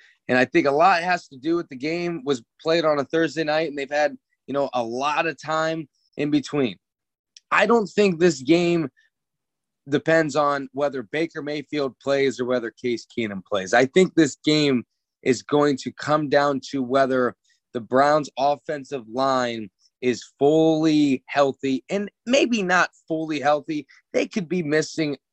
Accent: American